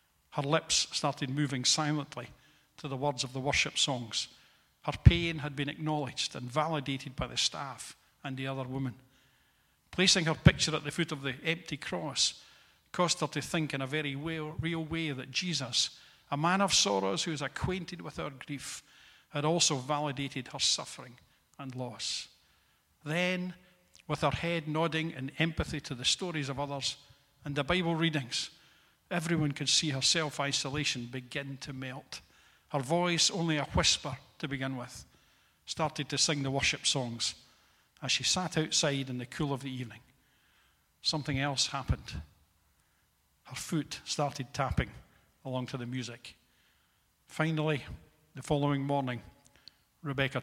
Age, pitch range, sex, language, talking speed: 50-69, 130-155 Hz, male, English, 150 wpm